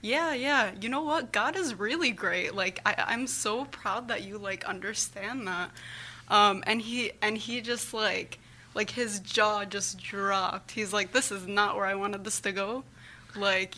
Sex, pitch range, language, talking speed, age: female, 195-230 Hz, English, 185 wpm, 20-39